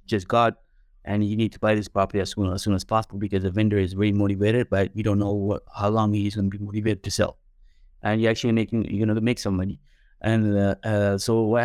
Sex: male